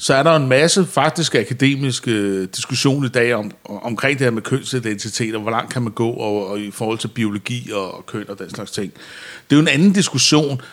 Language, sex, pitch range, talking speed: Danish, male, 110-135 Hz, 225 wpm